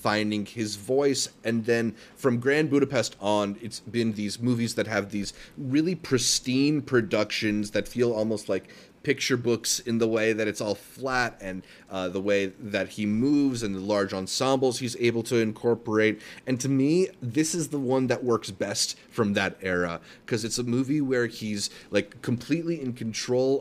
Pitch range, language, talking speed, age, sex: 105-125 Hz, English, 180 wpm, 30-49, male